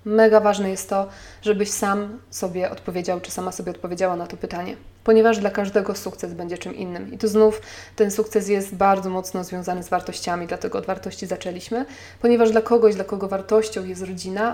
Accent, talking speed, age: native, 185 wpm, 20-39